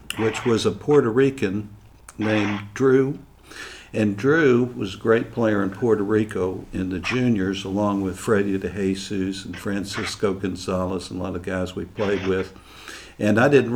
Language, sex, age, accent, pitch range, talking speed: English, male, 60-79, American, 100-115 Hz, 165 wpm